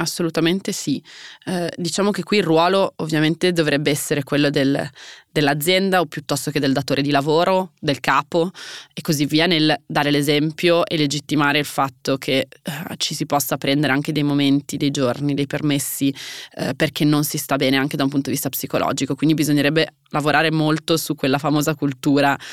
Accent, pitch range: native, 145-165 Hz